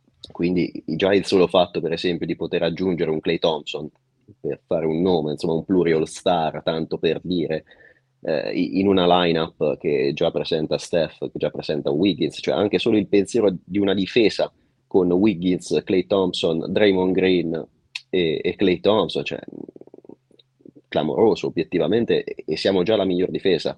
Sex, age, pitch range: male, 30-49, 85-105 Hz